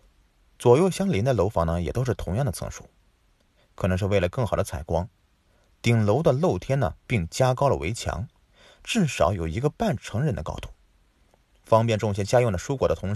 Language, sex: Chinese, male